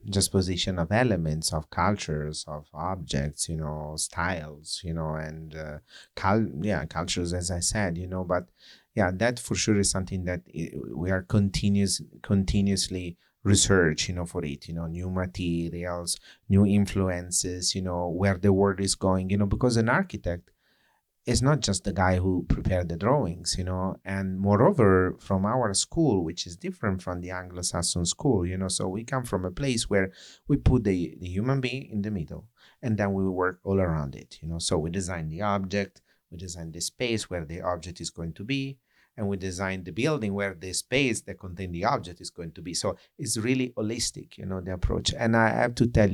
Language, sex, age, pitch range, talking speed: English, male, 30-49, 90-105 Hz, 200 wpm